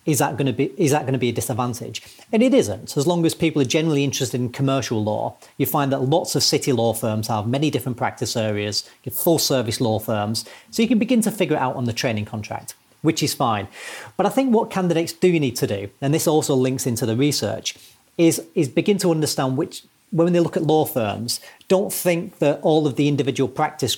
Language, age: English, 40-59